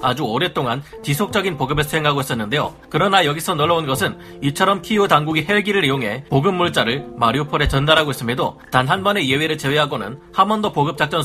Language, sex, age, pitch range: Korean, male, 30-49, 130-170 Hz